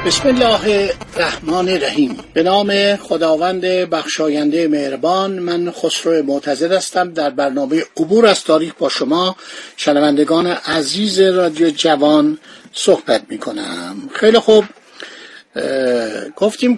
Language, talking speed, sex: Persian, 105 wpm, male